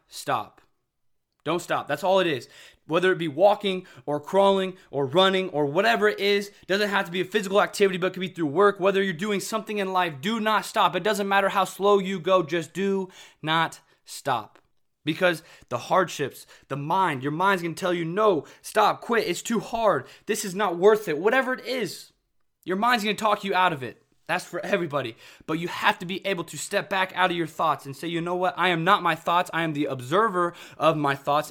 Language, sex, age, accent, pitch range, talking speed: English, male, 20-39, American, 155-195 Hz, 220 wpm